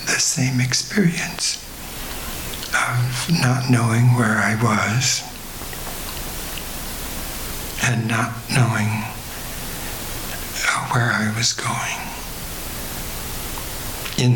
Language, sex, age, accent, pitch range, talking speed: English, male, 60-79, American, 80-125 Hz, 70 wpm